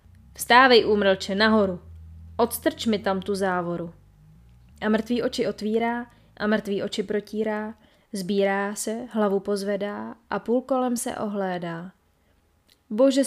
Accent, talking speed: native, 120 wpm